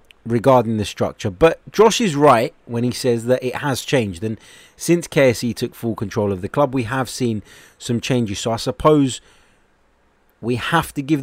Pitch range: 110-135 Hz